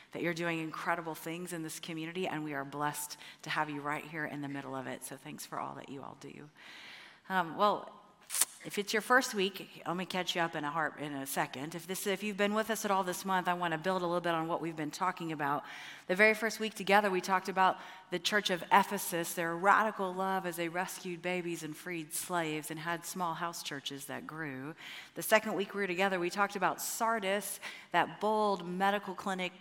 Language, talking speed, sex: English, 235 wpm, female